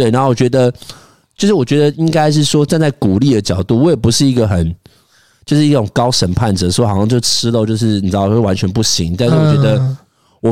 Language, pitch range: Chinese, 100-135 Hz